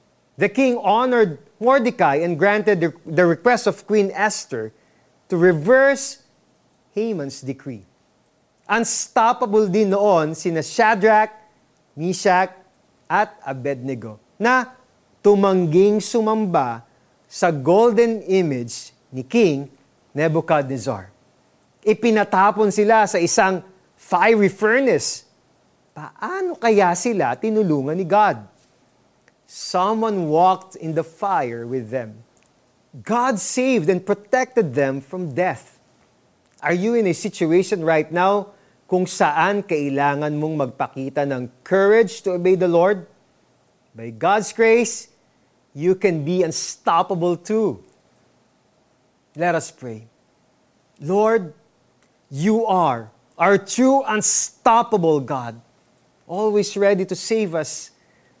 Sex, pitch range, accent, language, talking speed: male, 150-215 Hz, native, Filipino, 100 wpm